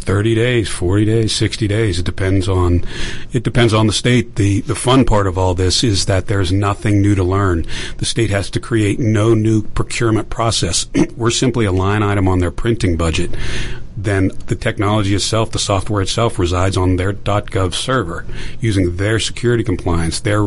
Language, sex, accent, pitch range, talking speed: English, male, American, 95-120 Hz, 190 wpm